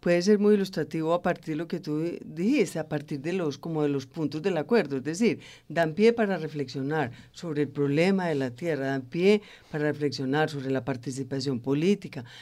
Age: 50-69